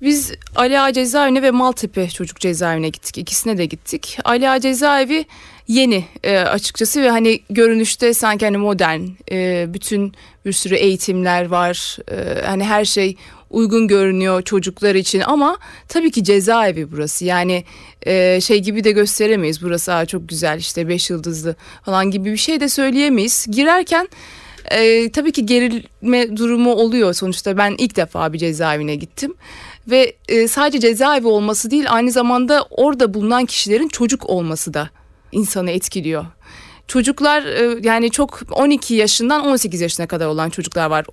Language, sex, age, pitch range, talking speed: Turkish, female, 30-49, 185-245 Hz, 145 wpm